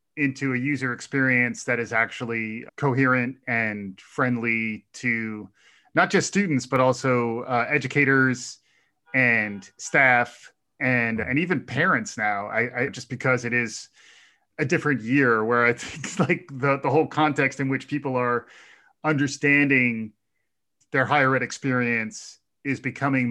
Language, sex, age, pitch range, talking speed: English, male, 30-49, 120-140 Hz, 140 wpm